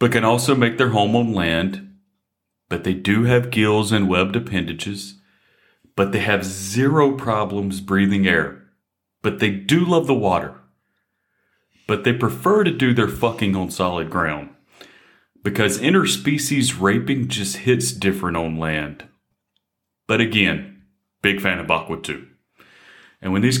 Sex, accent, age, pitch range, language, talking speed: male, American, 40-59, 95-115 Hz, English, 145 wpm